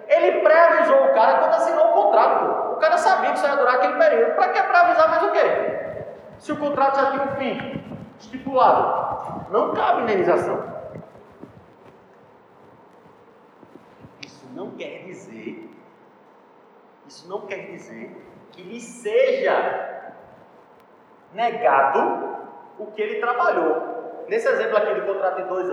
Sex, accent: male, Brazilian